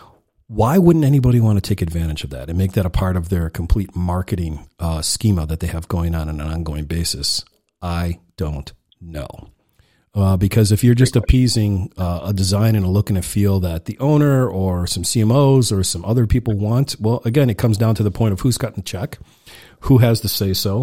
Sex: male